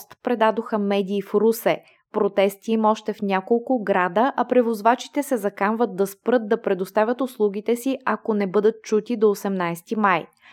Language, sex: Bulgarian, female